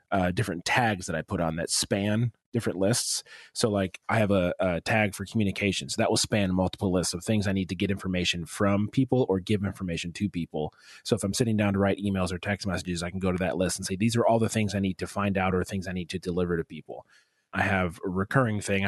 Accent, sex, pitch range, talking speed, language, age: American, male, 90-110 Hz, 260 wpm, English, 30-49